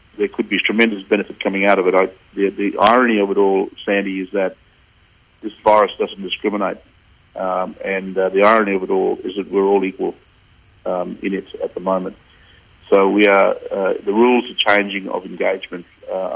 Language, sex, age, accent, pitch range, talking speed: English, male, 50-69, Australian, 95-105 Hz, 195 wpm